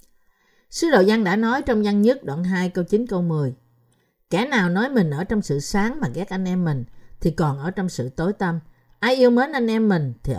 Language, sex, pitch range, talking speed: Vietnamese, female, 155-225 Hz, 235 wpm